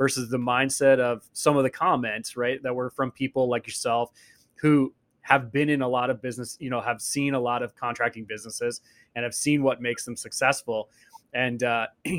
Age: 20-39